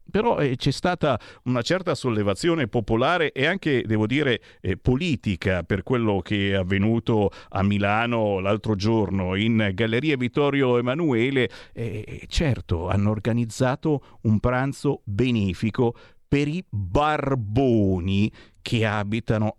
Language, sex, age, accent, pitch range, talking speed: Italian, male, 50-69, native, 100-130 Hz, 120 wpm